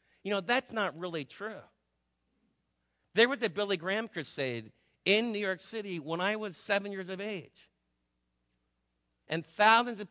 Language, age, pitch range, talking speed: English, 50-69, 160-215 Hz, 155 wpm